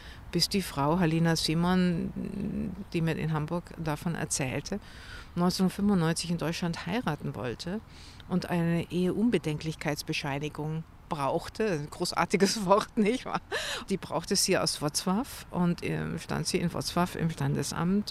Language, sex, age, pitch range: German, female, 50-69, 160-200 Hz